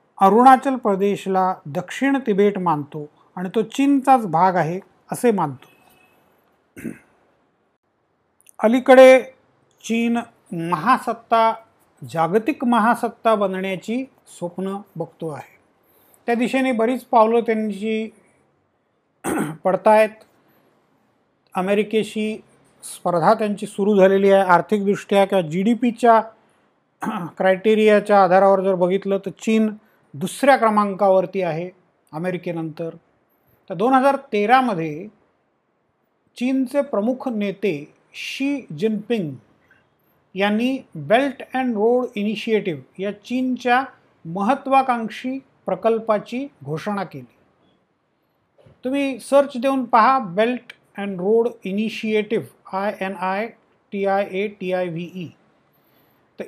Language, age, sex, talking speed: Marathi, 40-59, male, 90 wpm